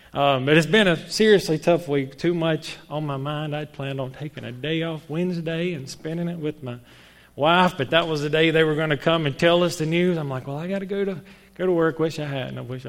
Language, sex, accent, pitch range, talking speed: English, male, American, 135-165 Hz, 270 wpm